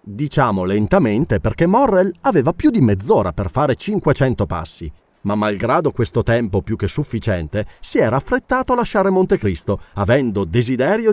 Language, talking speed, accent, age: Italian, 145 wpm, native, 30-49